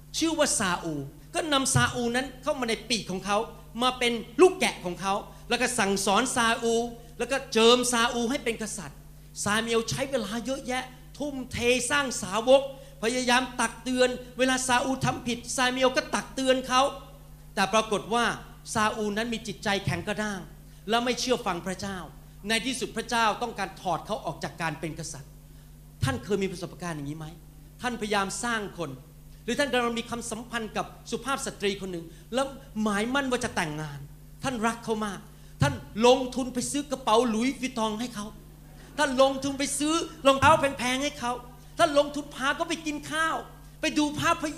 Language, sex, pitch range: Thai, male, 190-260 Hz